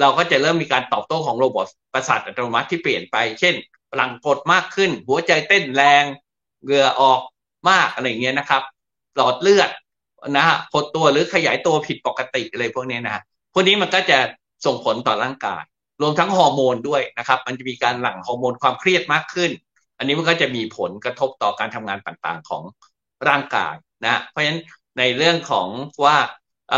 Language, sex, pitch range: English, male, 130-165 Hz